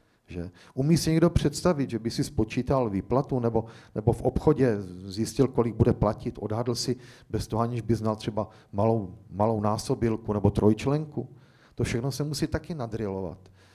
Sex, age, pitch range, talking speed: male, 40-59, 110-145 Hz, 160 wpm